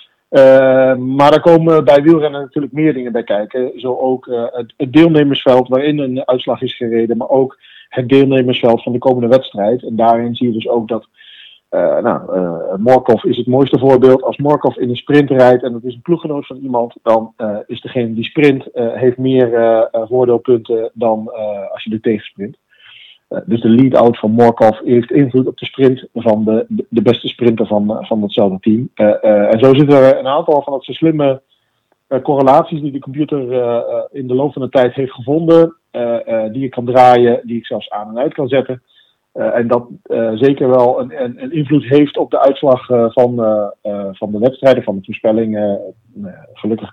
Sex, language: male, Dutch